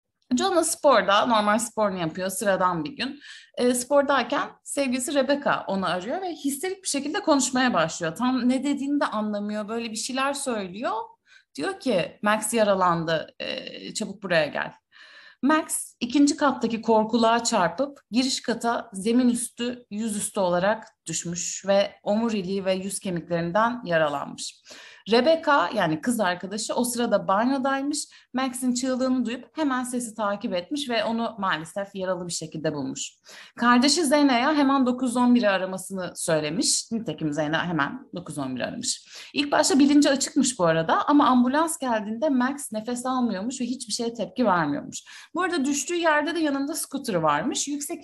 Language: Turkish